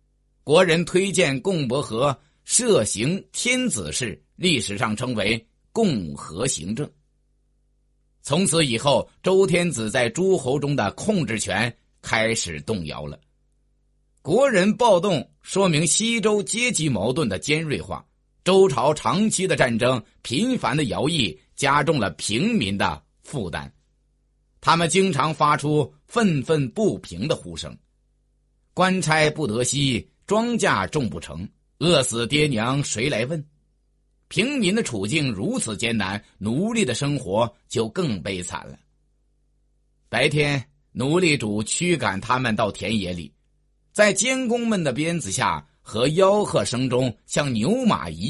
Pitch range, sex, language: 110-180 Hz, male, Chinese